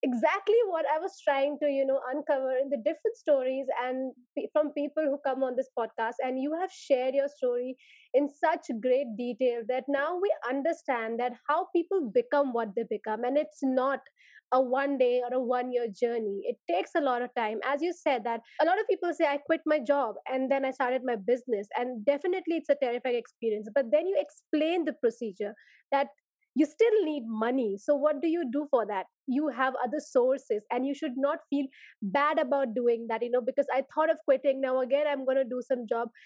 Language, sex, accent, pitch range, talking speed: English, female, Indian, 250-310 Hz, 215 wpm